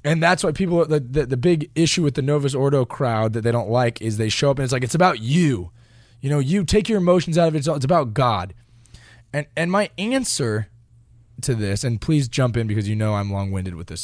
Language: English